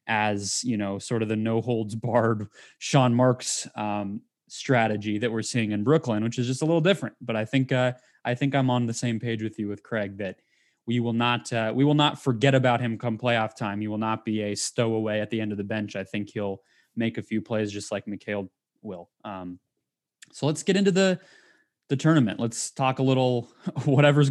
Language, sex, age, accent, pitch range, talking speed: English, male, 20-39, American, 110-135 Hz, 220 wpm